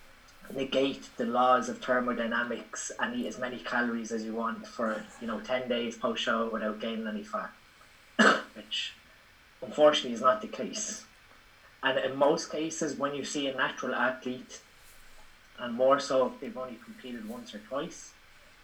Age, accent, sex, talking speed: 20-39, Irish, male, 160 wpm